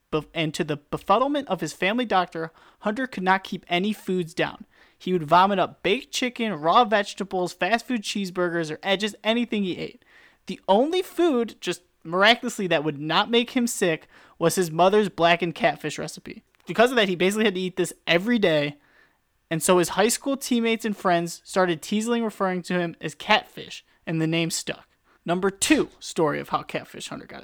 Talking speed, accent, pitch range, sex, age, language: 190 wpm, American, 170-225 Hz, male, 30-49, English